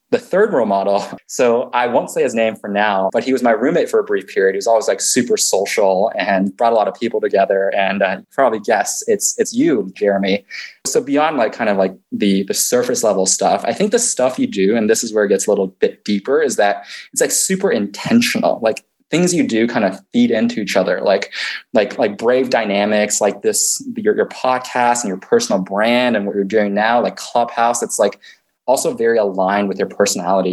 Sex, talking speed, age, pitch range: male, 225 wpm, 20-39, 100-135 Hz